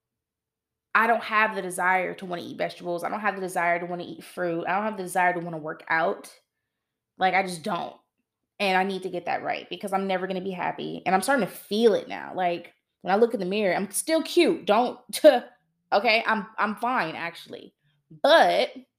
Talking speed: 230 wpm